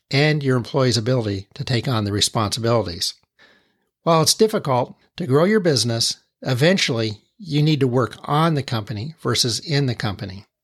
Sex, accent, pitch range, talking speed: male, American, 115-160 Hz, 160 wpm